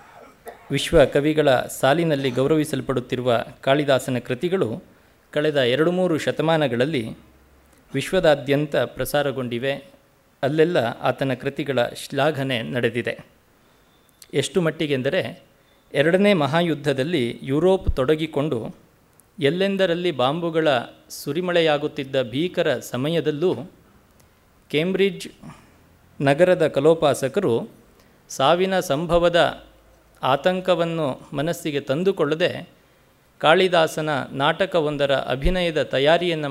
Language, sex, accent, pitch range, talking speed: Kannada, male, native, 135-170 Hz, 65 wpm